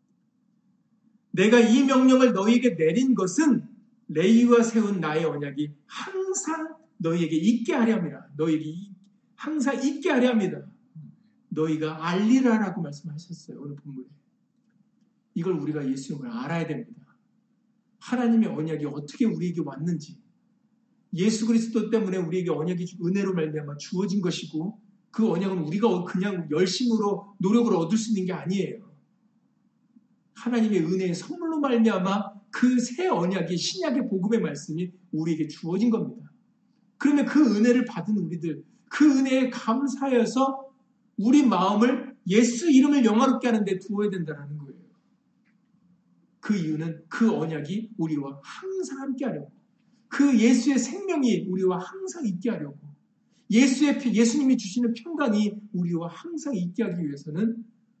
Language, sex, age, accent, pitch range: Korean, male, 40-59, native, 180-240 Hz